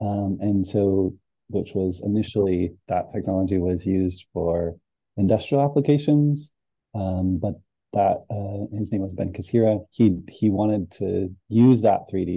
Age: 30-49